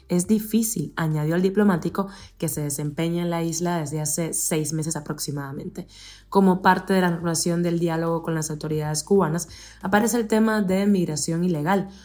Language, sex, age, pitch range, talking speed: Spanish, female, 20-39, 160-200 Hz, 165 wpm